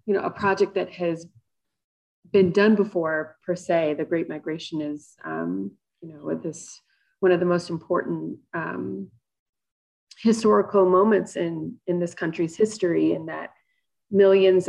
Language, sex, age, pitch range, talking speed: English, female, 30-49, 165-200 Hz, 145 wpm